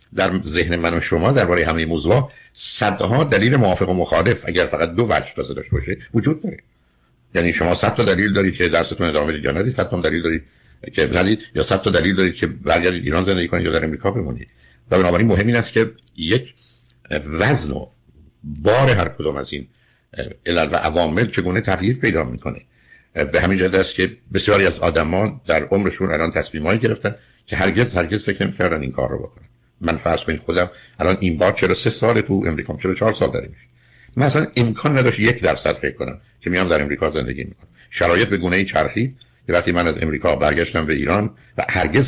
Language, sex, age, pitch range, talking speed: Persian, male, 60-79, 85-115 Hz, 195 wpm